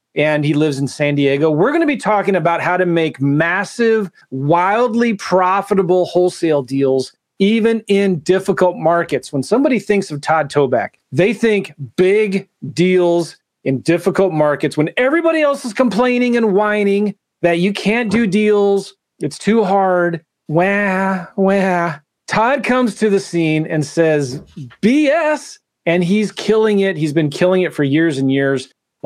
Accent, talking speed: American, 155 wpm